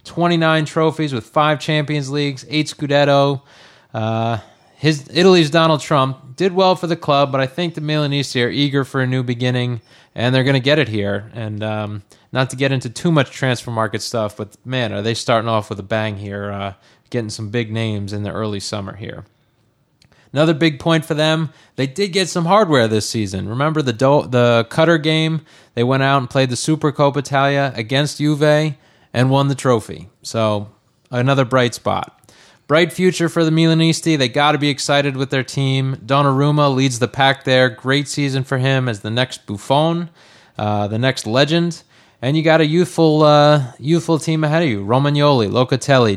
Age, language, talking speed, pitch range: 20-39, English, 190 wpm, 120-150 Hz